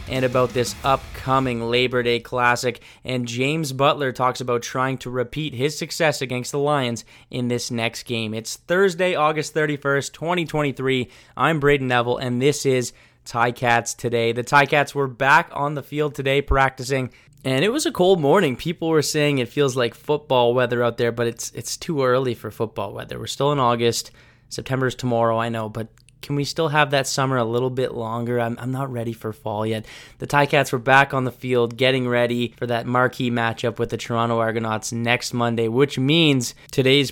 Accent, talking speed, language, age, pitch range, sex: American, 190 wpm, English, 20-39, 115-135 Hz, male